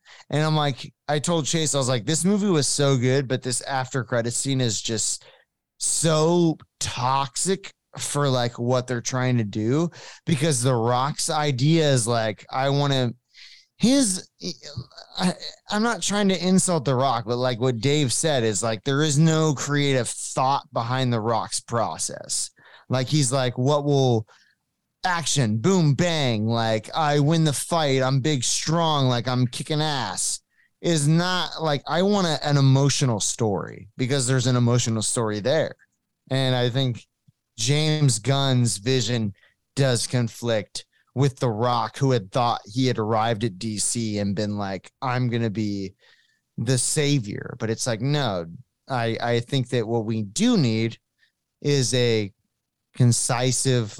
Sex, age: male, 20-39